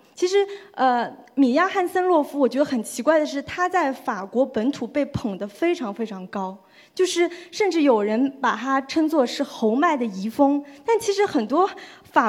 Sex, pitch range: female, 235-305 Hz